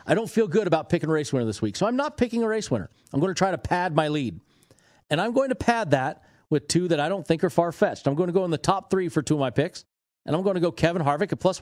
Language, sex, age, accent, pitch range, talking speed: English, male, 40-59, American, 130-175 Hz, 320 wpm